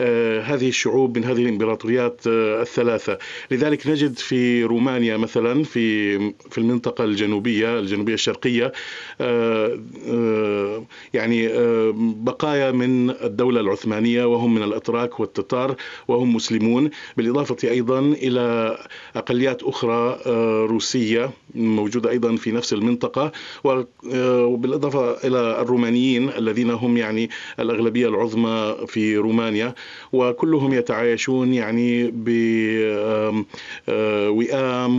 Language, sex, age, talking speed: Arabic, male, 40-59, 100 wpm